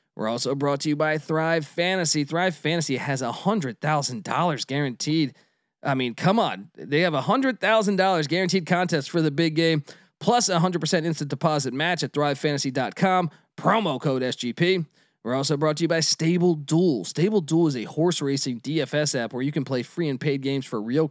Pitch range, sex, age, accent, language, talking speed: 140-175 Hz, male, 20-39, American, English, 200 wpm